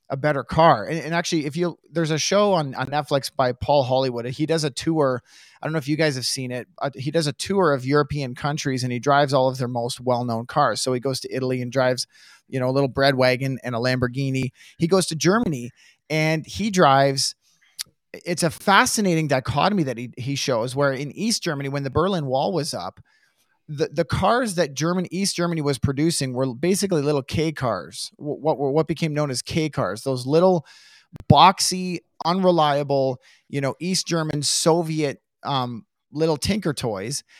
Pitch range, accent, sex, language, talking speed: 130-165 Hz, American, male, English, 200 wpm